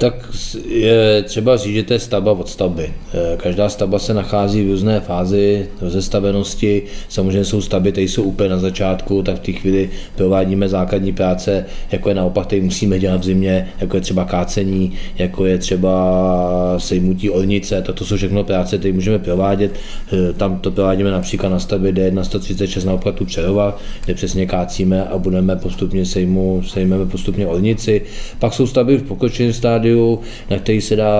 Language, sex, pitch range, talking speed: Czech, male, 95-100 Hz, 165 wpm